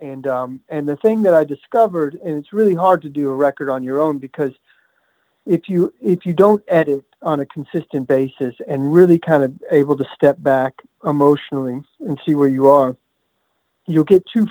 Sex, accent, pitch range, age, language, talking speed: male, American, 135-170 Hz, 40-59, English, 195 wpm